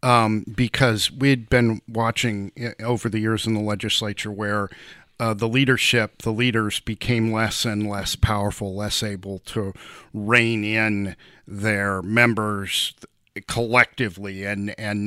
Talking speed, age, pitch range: 125 wpm, 40-59, 100-120 Hz